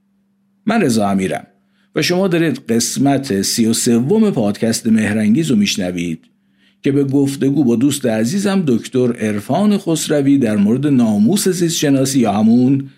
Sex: male